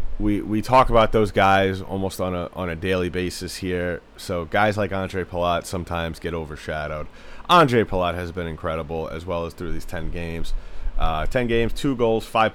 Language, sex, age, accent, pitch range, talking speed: English, male, 30-49, American, 80-105 Hz, 190 wpm